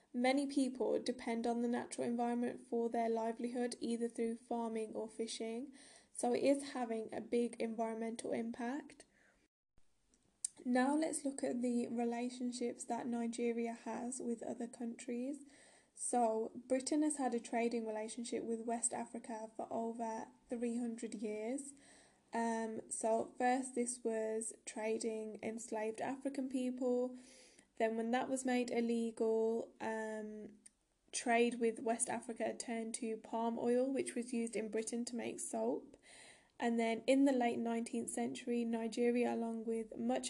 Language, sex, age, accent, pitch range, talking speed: English, female, 10-29, British, 225-245 Hz, 135 wpm